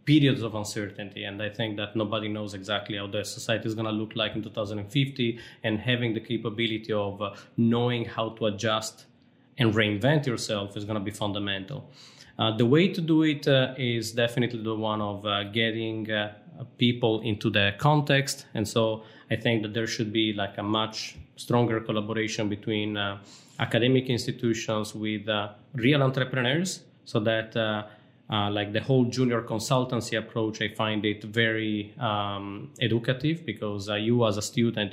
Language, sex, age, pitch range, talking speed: Romanian, male, 20-39, 105-125 Hz, 170 wpm